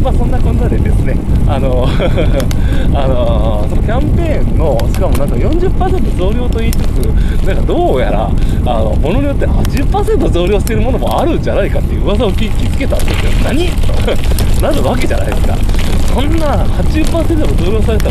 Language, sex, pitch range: Japanese, male, 90-110 Hz